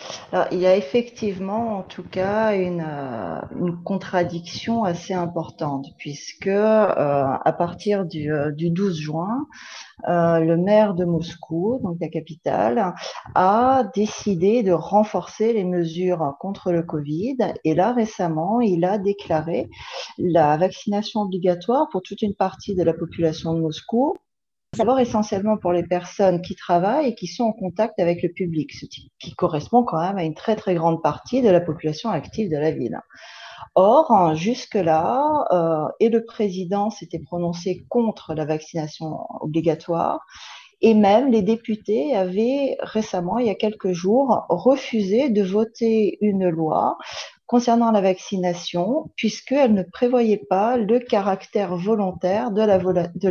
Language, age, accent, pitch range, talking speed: French, 40-59, French, 170-220 Hz, 145 wpm